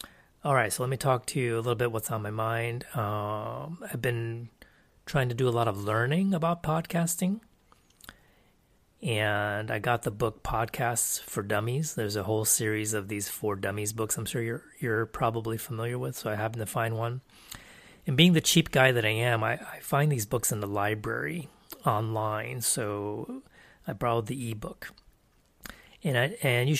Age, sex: 30-49, male